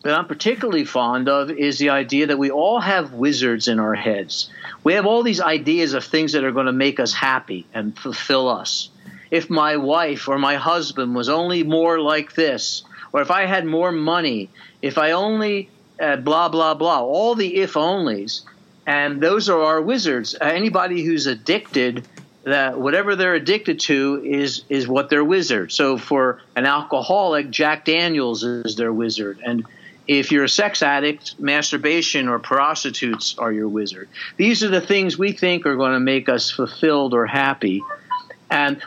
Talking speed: 175 wpm